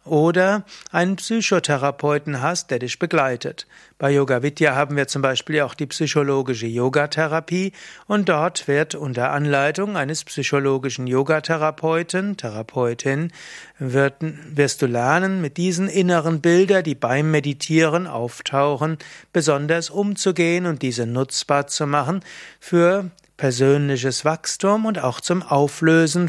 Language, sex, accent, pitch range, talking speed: German, male, German, 140-175 Hz, 120 wpm